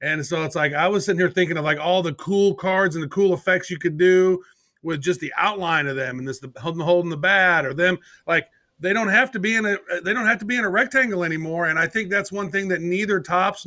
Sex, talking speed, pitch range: male, 270 wpm, 165-195 Hz